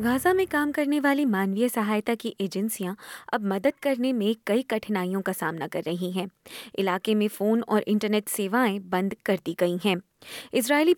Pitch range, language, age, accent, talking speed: 190-235 Hz, Hindi, 20-39, native, 175 wpm